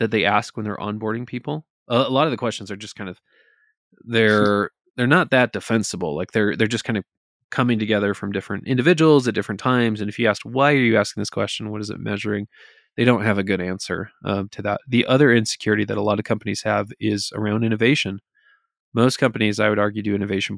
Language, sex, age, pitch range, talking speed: English, male, 20-39, 100-120 Hz, 225 wpm